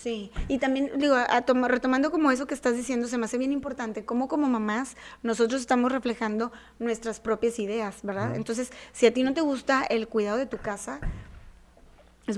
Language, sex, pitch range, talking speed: Spanish, female, 220-265 Hz, 195 wpm